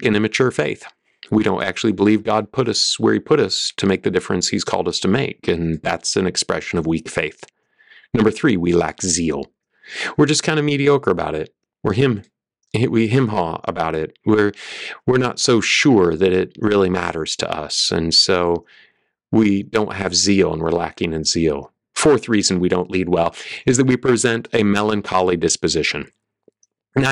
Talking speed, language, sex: 190 wpm, English, male